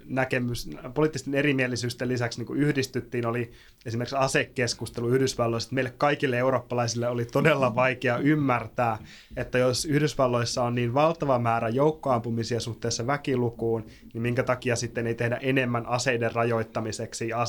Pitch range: 120-140 Hz